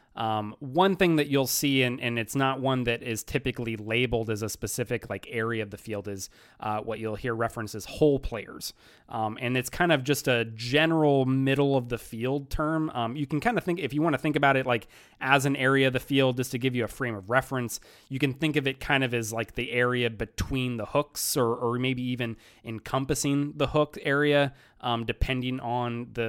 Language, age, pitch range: English, 30-49, 110-135 Hz